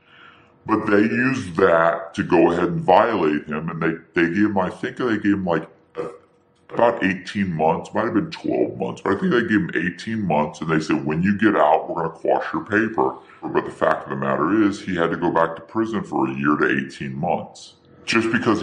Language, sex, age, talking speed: English, female, 50-69, 235 wpm